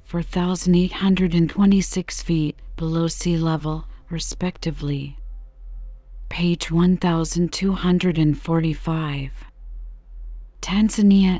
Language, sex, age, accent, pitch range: English, female, 40-59, American, 160-180 Hz